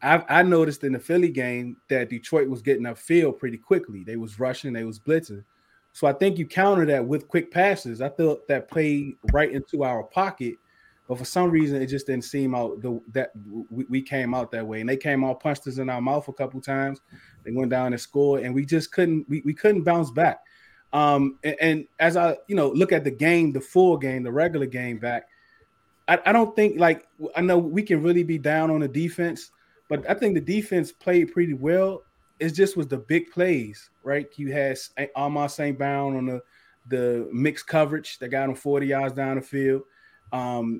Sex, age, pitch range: male, 20-39, 130-165 Hz